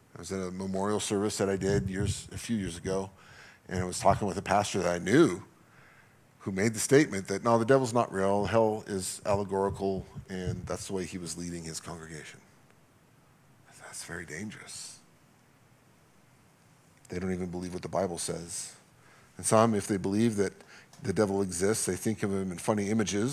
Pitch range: 95-130 Hz